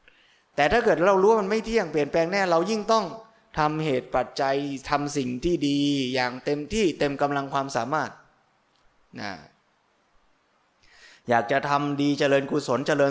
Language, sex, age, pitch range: Thai, male, 20-39, 130-165 Hz